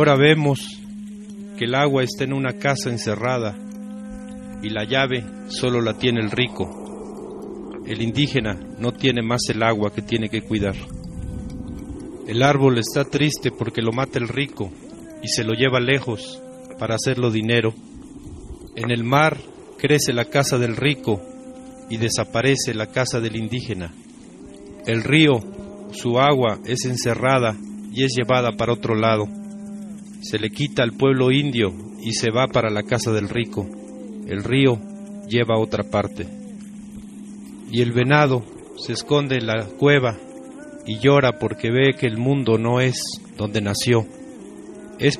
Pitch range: 110-140 Hz